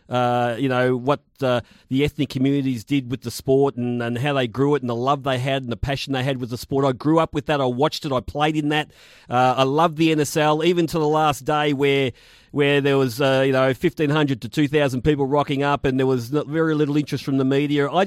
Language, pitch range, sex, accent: English, 135-155 Hz, male, Australian